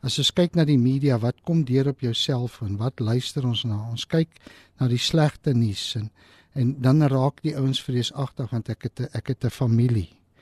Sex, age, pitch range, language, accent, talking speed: male, 50-69, 120-155 Hz, English, Dutch, 215 wpm